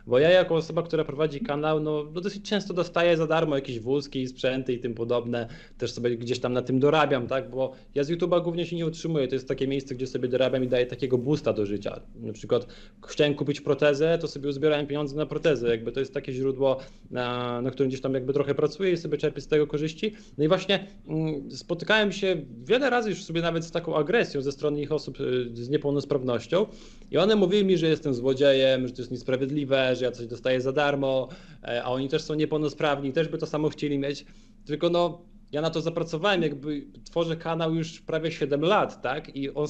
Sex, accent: male, native